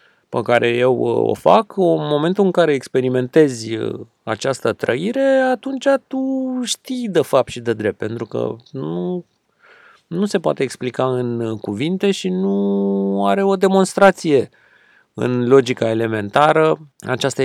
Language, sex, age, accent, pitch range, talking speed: Romanian, male, 30-49, native, 115-170 Hz, 130 wpm